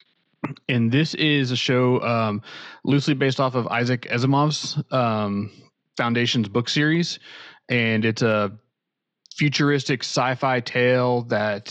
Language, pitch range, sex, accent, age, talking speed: English, 110-135 Hz, male, American, 30-49, 120 wpm